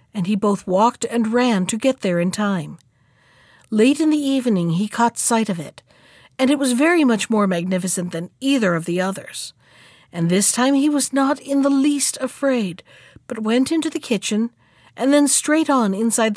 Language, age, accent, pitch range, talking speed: English, 50-69, American, 175-260 Hz, 190 wpm